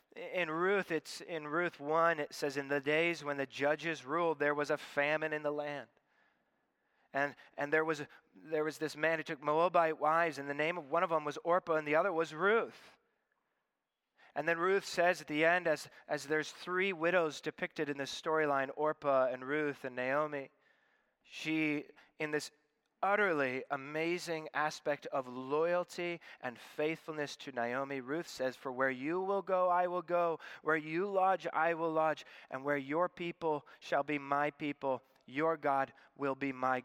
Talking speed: 180 wpm